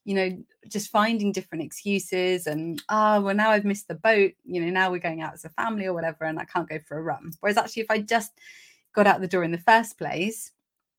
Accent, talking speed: British, 245 wpm